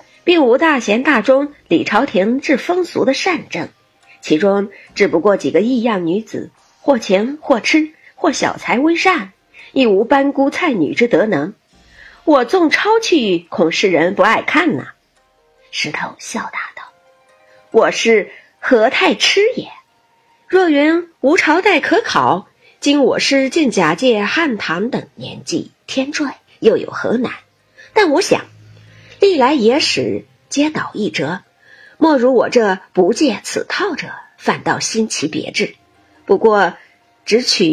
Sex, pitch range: female, 210-325 Hz